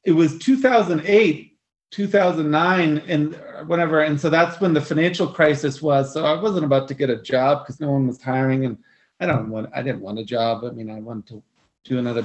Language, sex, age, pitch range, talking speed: English, male, 30-49, 140-185 Hz, 210 wpm